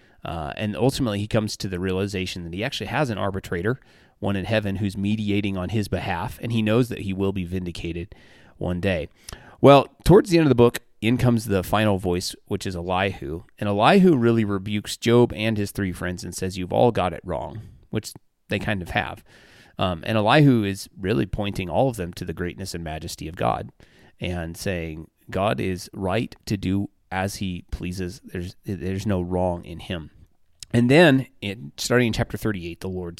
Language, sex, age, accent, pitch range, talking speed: English, male, 30-49, American, 90-115 Hz, 195 wpm